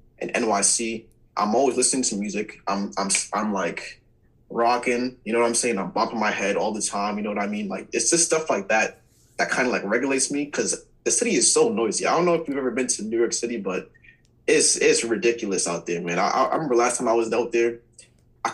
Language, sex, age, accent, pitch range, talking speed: English, male, 20-39, American, 110-140 Hz, 245 wpm